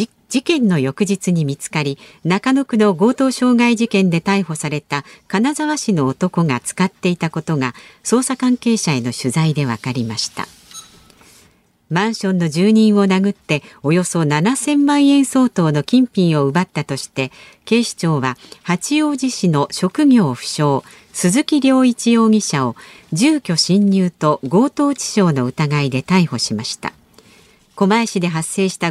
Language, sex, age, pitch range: Japanese, female, 50-69, 155-225 Hz